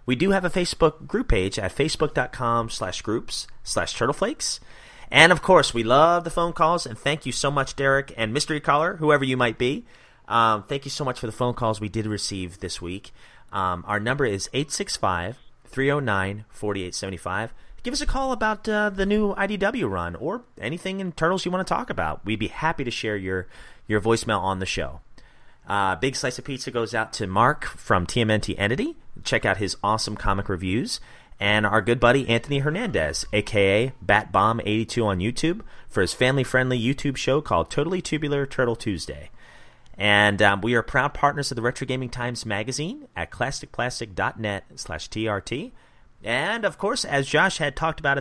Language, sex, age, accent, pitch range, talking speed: English, male, 30-49, American, 105-150 Hz, 180 wpm